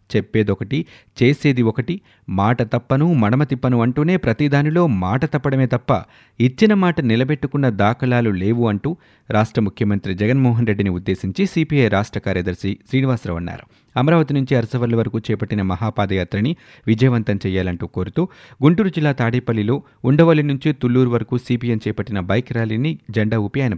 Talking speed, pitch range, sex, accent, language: 125 wpm, 105-135 Hz, male, native, Telugu